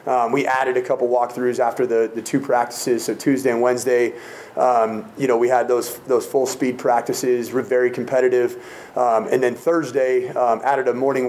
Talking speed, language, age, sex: 190 wpm, English, 30-49, male